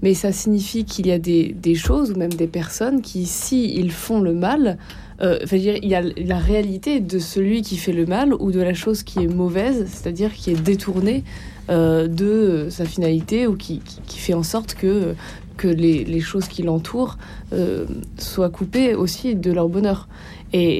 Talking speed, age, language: 210 wpm, 20-39, French